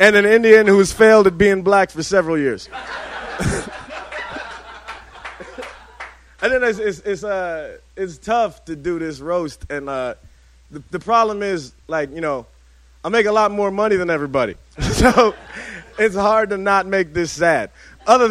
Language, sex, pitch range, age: English, male, 160-225 Hz, 30-49